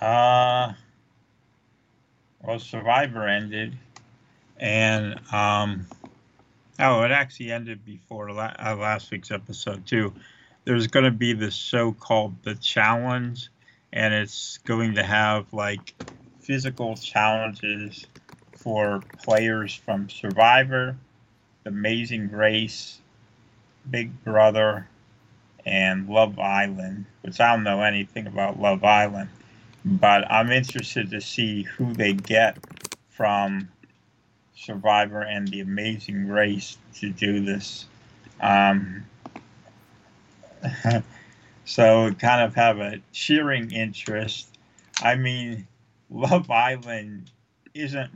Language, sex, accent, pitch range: English, male, American, 105-120 Hz